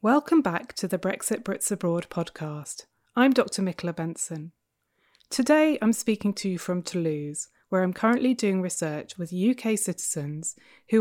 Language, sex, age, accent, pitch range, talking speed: English, female, 20-39, British, 170-225 Hz, 155 wpm